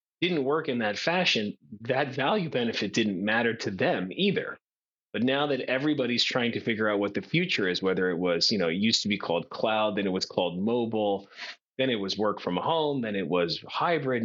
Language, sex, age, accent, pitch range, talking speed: English, male, 30-49, American, 100-130 Hz, 215 wpm